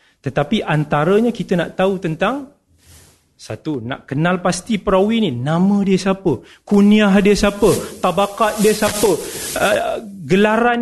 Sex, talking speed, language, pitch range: male, 130 wpm, Malay, 145-230 Hz